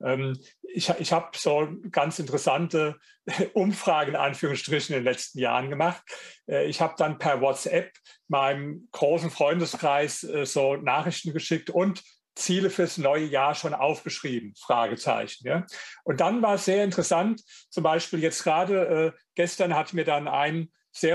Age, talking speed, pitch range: 40-59, 145 wpm, 150-175 Hz